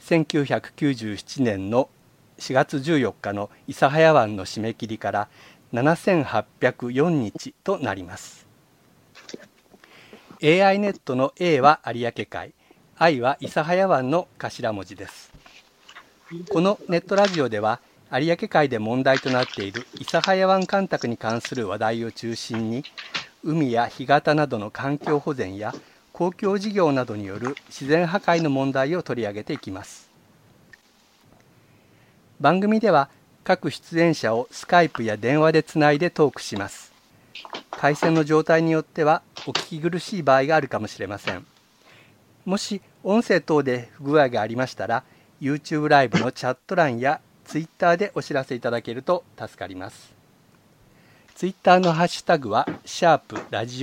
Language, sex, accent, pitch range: Japanese, male, native, 120-170 Hz